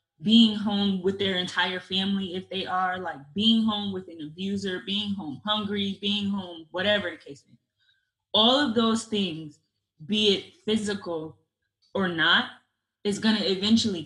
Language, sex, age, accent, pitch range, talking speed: English, female, 20-39, American, 160-200 Hz, 160 wpm